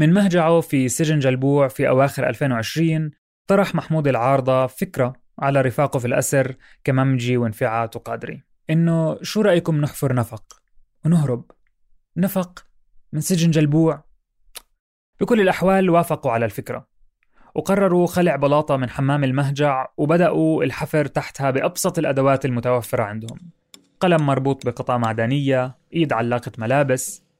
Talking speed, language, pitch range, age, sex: 120 wpm, Arabic, 130-165 Hz, 20-39, male